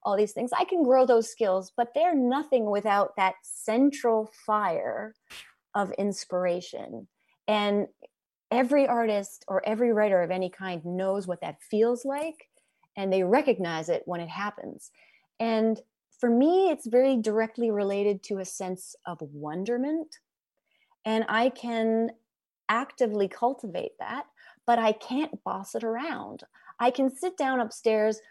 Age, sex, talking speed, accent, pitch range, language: 30-49, female, 140 wpm, American, 190-245 Hz, English